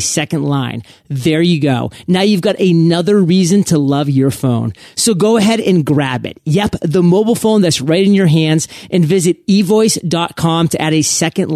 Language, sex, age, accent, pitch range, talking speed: English, male, 30-49, American, 145-195 Hz, 185 wpm